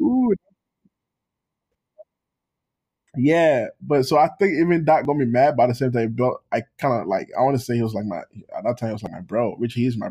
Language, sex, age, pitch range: English, male, 20-39, 110-150 Hz